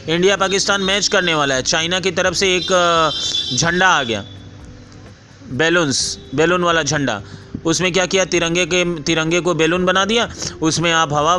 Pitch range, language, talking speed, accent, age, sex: 140-180 Hz, Hindi, 165 wpm, native, 30-49, male